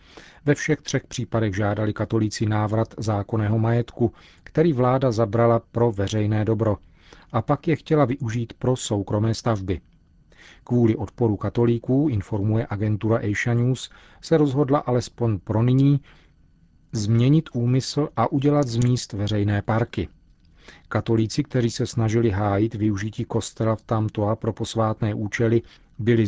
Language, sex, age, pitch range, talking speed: Czech, male, 40-59, 105-120 Hz, 130 wpm